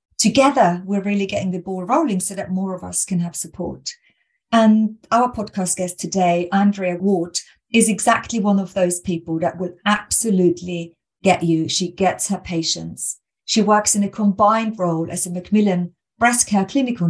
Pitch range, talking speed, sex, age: 175-215 Hz, 170 wpm, female, 40-59